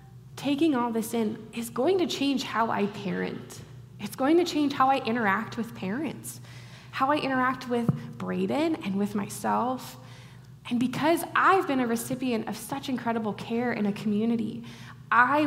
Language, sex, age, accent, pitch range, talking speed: English, female, 10-29, American, 200-260 Hz, 165 wpm